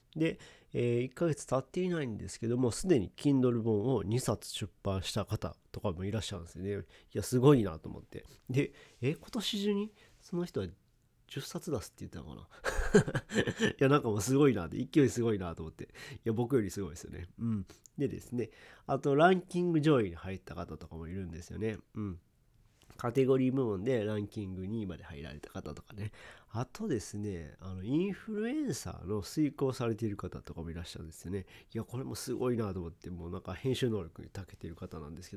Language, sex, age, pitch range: Japanese, male, 40-59, 95-135 Hz